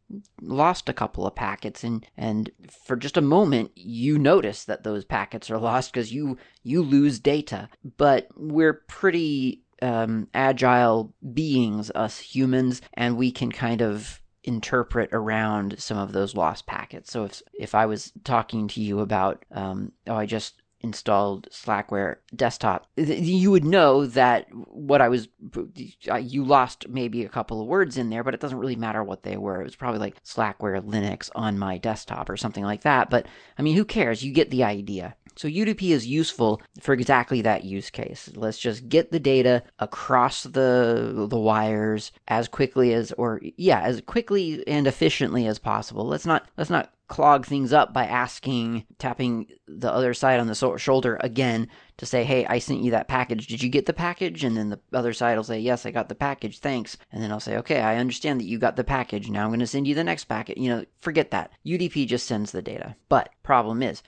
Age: 30-49